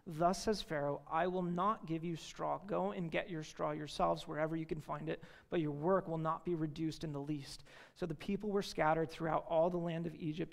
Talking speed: 235 wpm